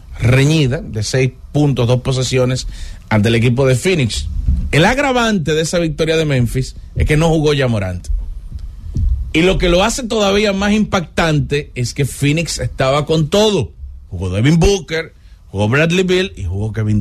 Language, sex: English, male